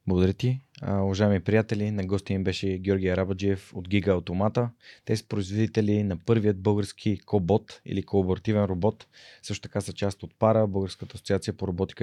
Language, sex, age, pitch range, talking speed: Bulgarian, male, 20-39, 95-115 Hz, 170 wpm